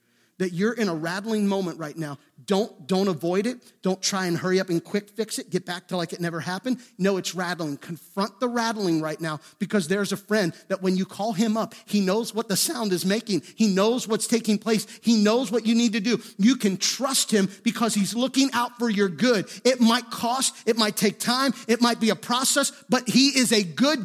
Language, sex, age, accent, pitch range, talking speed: English, male, 30-49, American, 185-245 Hz, 230 wpm